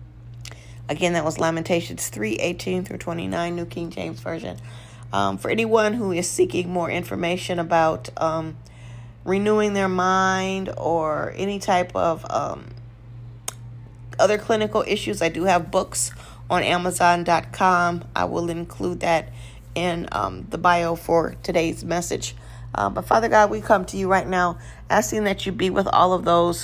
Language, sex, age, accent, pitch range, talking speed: English, female, 40-59, American, 120-185 Hz, 145 wpm